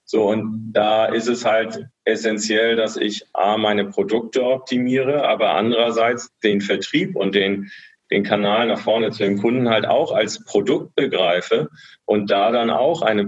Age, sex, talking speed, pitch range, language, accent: 40-59, male, 165 wpm, 105-120 Hz, German, German